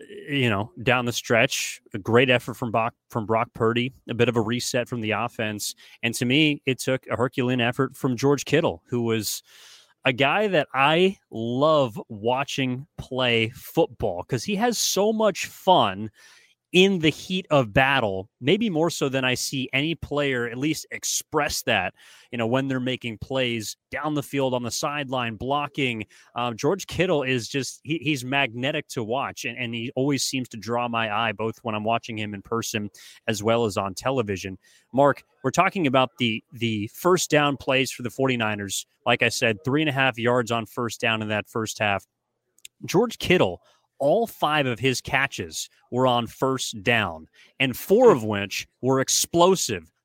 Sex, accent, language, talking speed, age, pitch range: male, American, English, 180 wpm, 30-49, 115-145 Hz